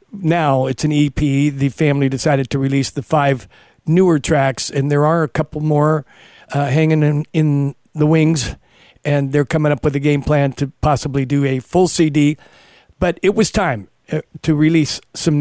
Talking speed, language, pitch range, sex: 180 wpm, English, 140-165 Hz, male